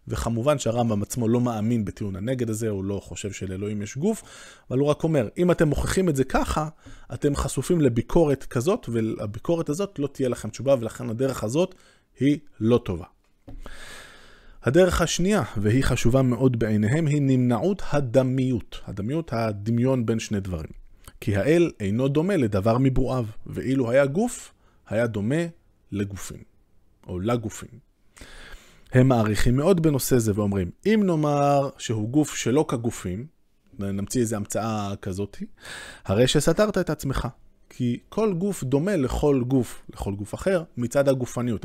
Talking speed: 145 wpm